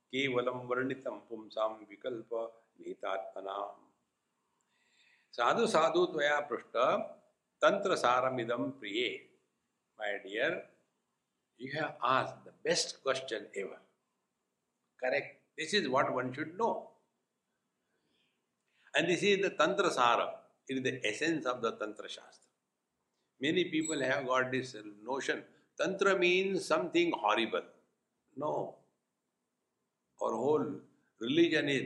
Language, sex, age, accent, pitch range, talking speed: English, male, 60-79, Indian, 115-180 Hz, 95 wpm